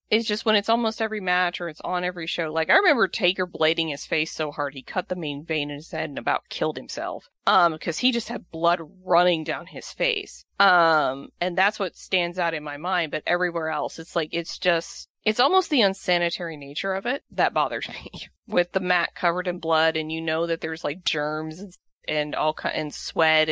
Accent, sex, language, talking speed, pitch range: American, female, English, 220 wpm, 160-195 Hz